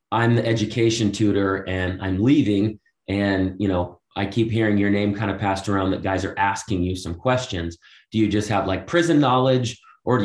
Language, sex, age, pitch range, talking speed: English, male, 30-49, 95-110 Hz, 205 wpm